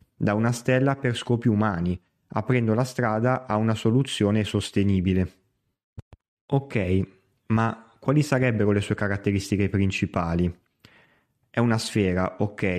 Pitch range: 100-115 Hz